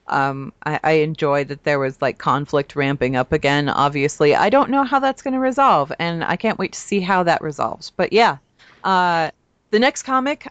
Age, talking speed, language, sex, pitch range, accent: 30-49, 205 wpm, English, female, 160-215 Hz, American